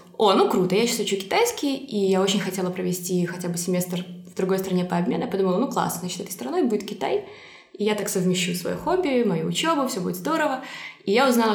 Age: 20-39